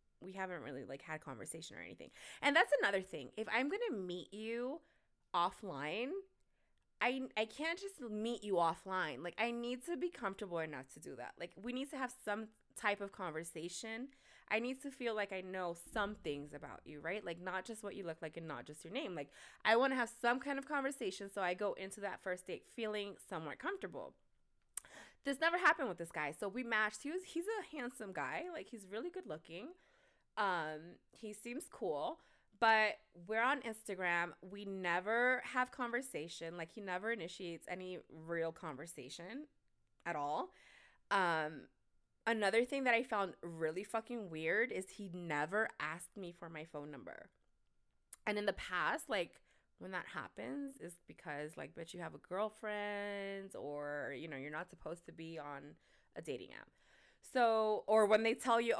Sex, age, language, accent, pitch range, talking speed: female, 20-39, English, American, 170-240 Hz, 185 wpm